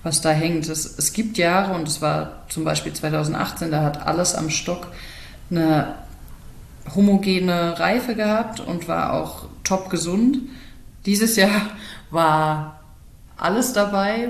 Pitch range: 155-195 Hz